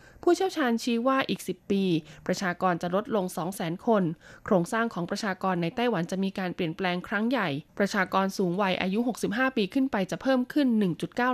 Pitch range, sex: 175-235 Hz, female